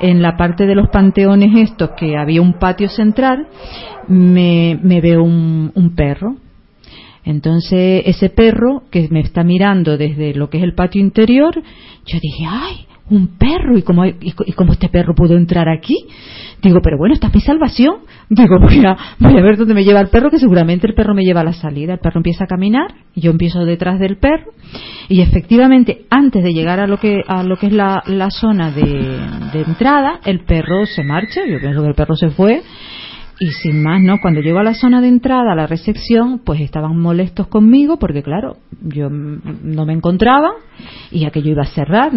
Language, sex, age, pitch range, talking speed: Spanish, female, 40-59, 170-225 Hz, 200 wpm